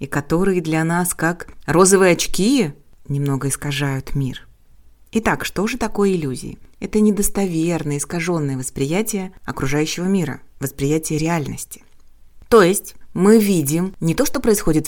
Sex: female